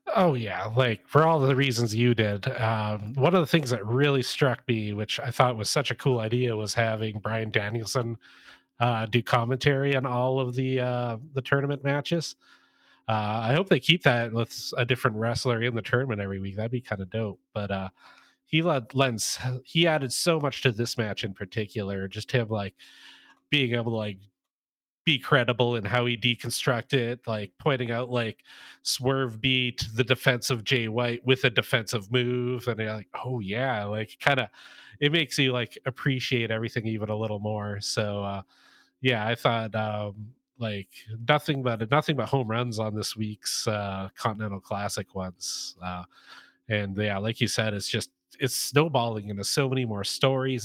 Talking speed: 185 wpm